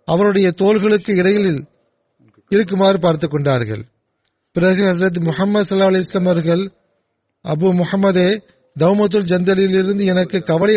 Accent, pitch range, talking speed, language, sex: native, 160-195 Hz, 100 wpm, Tamil, male